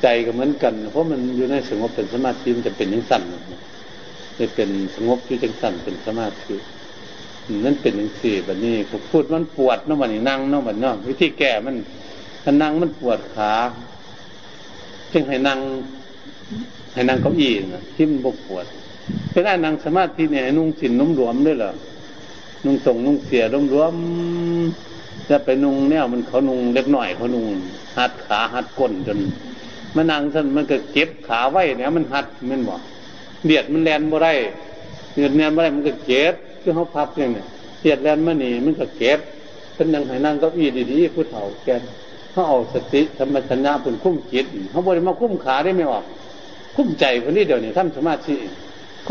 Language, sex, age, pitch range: Thai, male, 60-79, 125-160 Hz